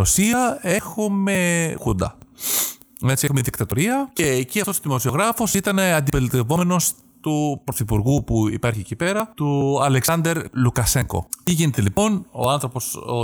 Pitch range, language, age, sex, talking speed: 120-180 Hz, Greek, 30-49, male, 125 wpm